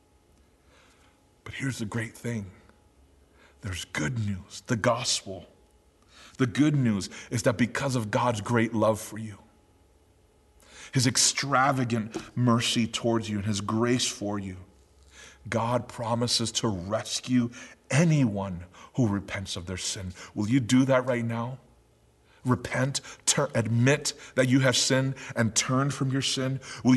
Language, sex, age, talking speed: English, male, 40-59, 135 wpm